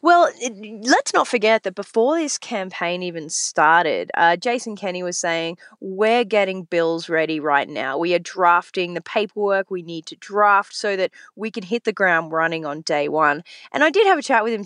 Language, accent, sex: English, Australian, female